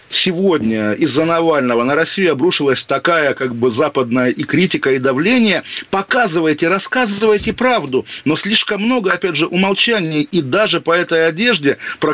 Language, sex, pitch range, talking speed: Russian, male, 145-185 Hz, 145 wpm